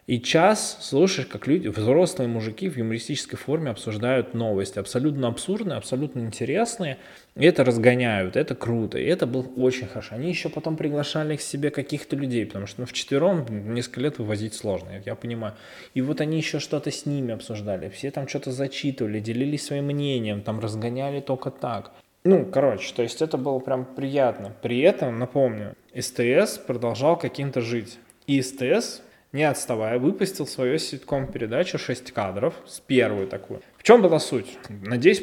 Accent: native